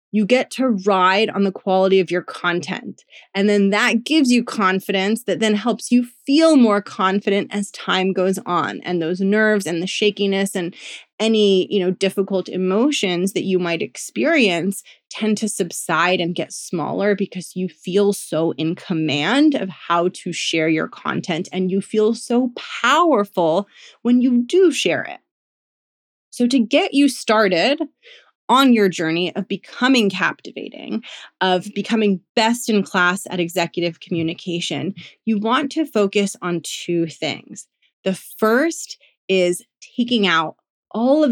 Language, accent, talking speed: English, American, 150 wpm